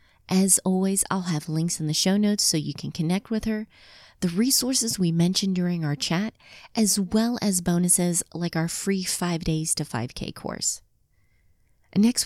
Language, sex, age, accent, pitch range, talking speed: English, female, 30-49, American, 160-210 Hz, 170 wpm